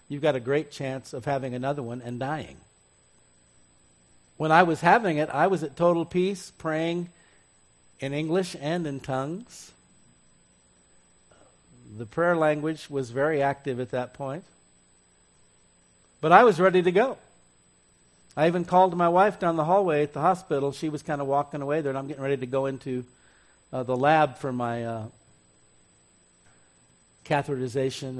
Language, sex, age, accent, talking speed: English, male, 50-69, American, 155 wpm